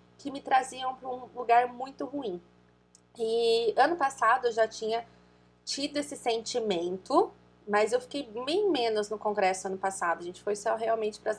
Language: Portuguese